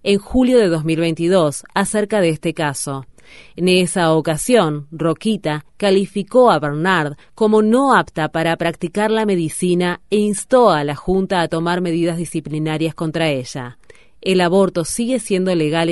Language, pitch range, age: Spanish, 160-200 Hz, 30-49